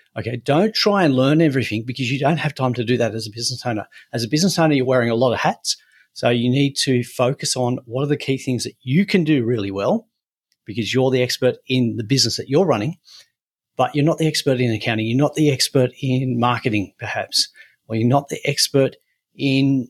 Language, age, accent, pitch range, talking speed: English, 40-59, Australian, 120-150 Hz, 225 wpm